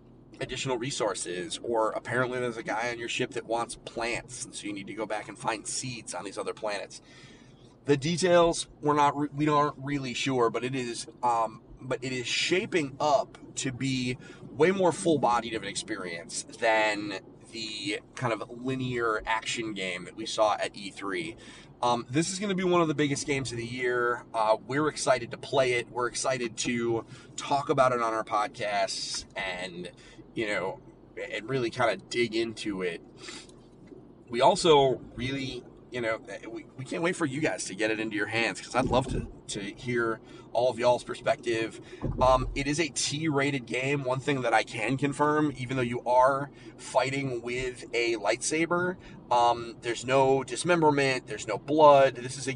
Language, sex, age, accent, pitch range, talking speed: English, male, 30-49, American, 115-140 Hz, 185 wpm